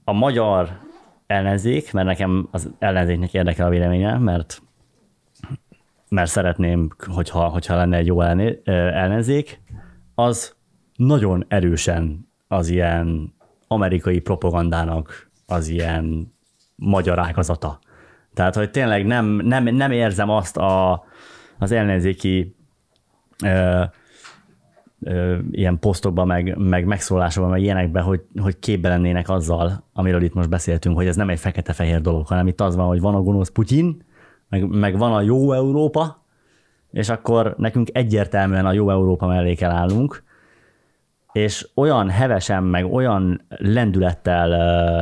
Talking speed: 125 wpm